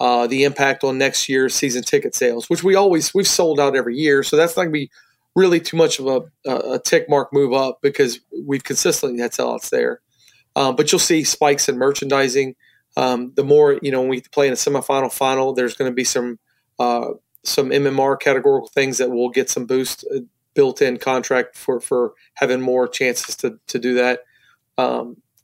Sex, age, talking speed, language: male, 30-49, 205 wpm, English